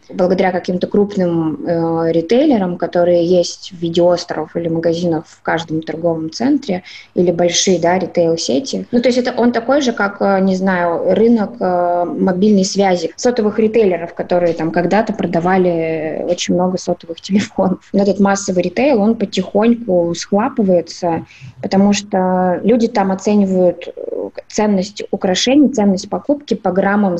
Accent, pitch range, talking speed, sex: native, 170-205 Hz, 135 wpm, female